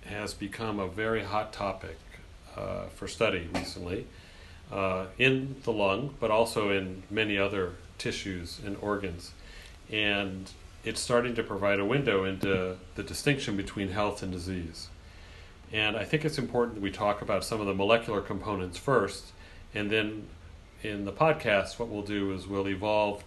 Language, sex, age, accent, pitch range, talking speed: English, male, 40-59, American, 95-115 Hz, 160 wpm